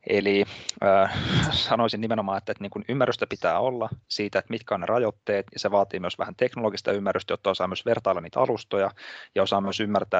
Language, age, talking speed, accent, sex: Finnish, 20-39, 175 wpm, native, male